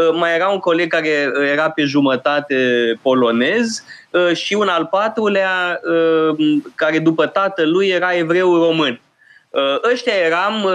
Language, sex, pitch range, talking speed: Romanian, male, 135-190 Hz, 115 wpm